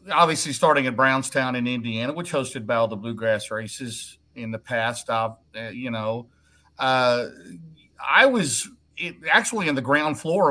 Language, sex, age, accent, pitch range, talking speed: English, male, 50-69, American, 120-145 Hz, 155 wpm